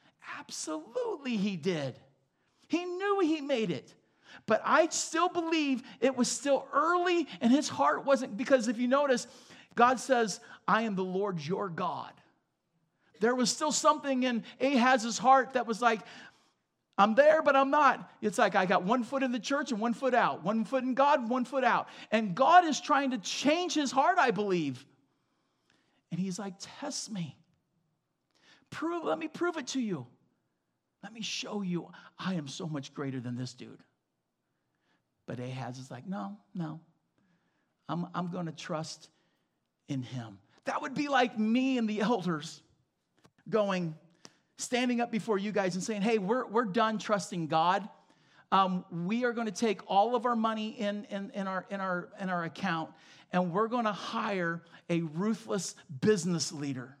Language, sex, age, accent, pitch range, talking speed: English, male, 40-59, American, 175-255 Hz, 175 wpm